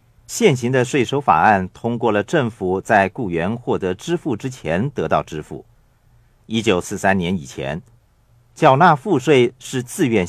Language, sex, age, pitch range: Chinese, male, 50-69, 115-135 Hz